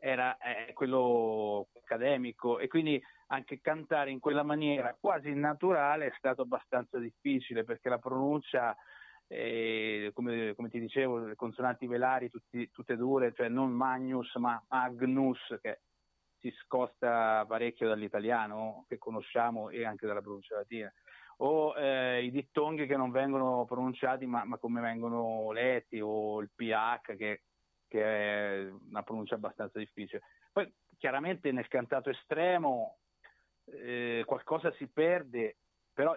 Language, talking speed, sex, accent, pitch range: Italian, 135 wpm, male, native, 110-130 Hz